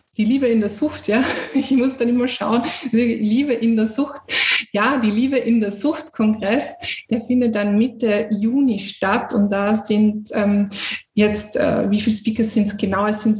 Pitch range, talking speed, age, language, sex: 210-235 Hz, 195 wpm, 20-39, German, female